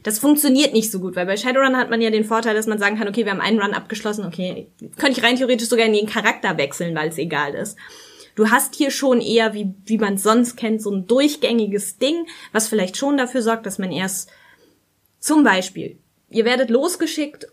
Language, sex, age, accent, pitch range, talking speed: German, female, 20-39, German, 205-250 Hz, 225 wpm